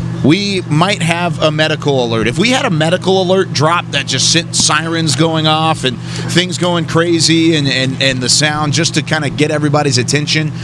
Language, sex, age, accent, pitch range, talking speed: English, male, 30-49, American, 135-165 Hz, 190 wpm